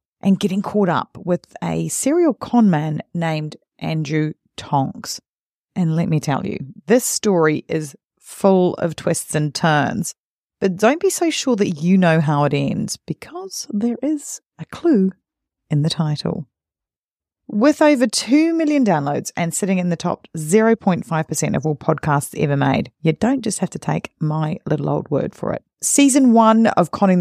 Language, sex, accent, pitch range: English, female, Australian, 155-225 Hz